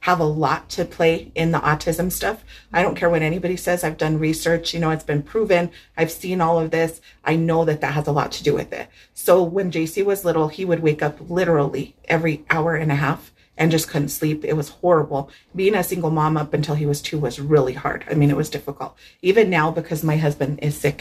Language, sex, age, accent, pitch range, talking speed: English, female, 30-49, American, 150-175 Hz, 245 wpm